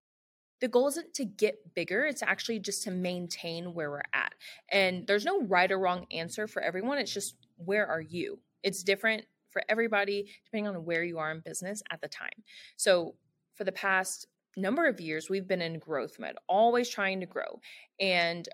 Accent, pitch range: American, 170-235 Hz